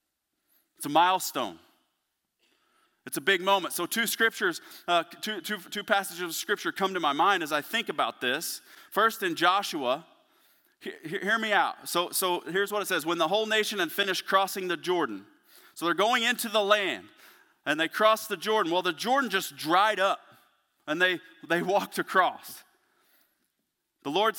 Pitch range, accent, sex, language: 145-210 Hz, American, male, English